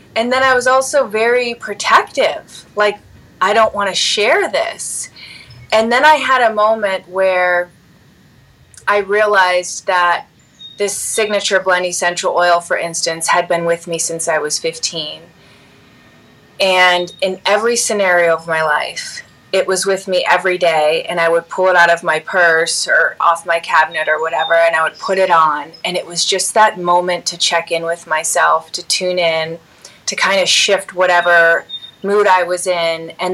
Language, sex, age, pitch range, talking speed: English, female, 30-49, 165-205 Hz, 175 wpm